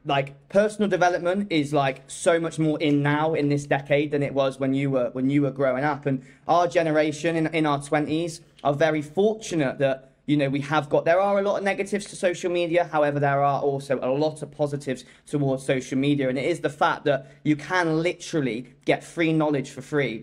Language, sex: English, male